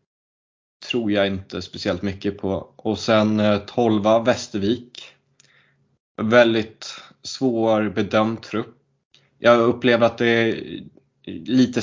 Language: Swedish